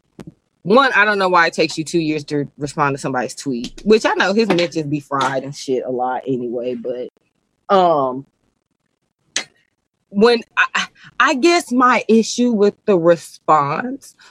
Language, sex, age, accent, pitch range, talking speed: English, female, 20-39, American, 160-225 Hz, 160 wpm